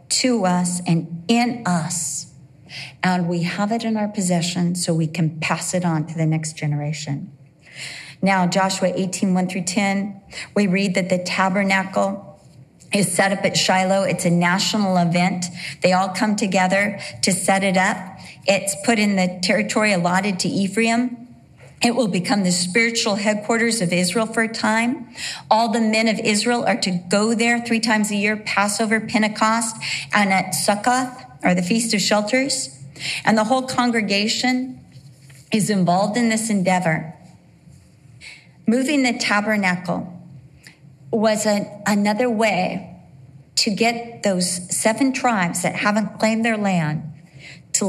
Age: 40-59